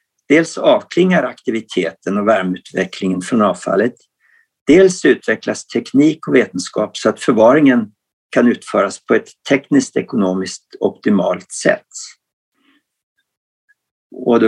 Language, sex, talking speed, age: Swedish, male, 105 wpm, 50-69